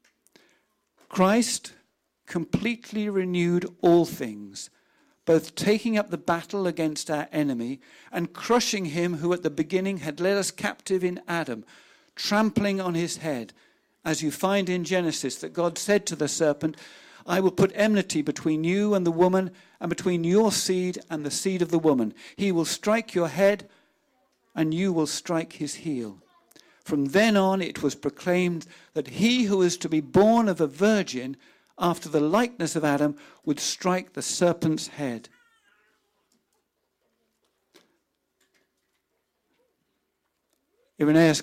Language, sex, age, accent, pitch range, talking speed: English, male, 50-69, British, 155-200 Hz, 140 wpm